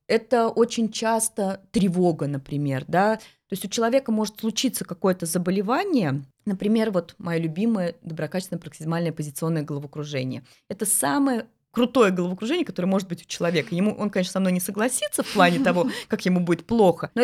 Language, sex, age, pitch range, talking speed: Russian, female, 20-39, 165-220 Hz, 160 wpm